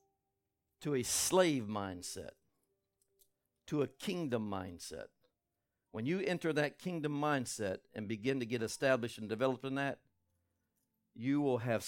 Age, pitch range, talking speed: 60-79, 100-140 Hz, 130 wpm